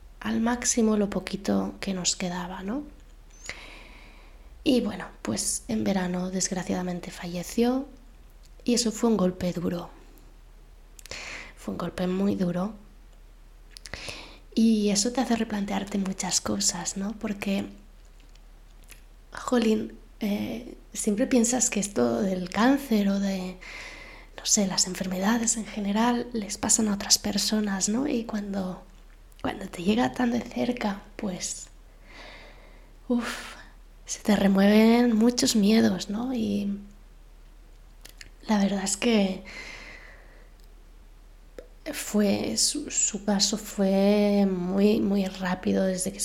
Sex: female